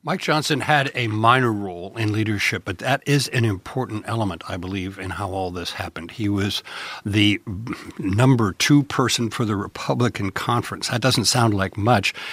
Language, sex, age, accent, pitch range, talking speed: English, male, 60-79, American, 100-140 Hz, 175 wpm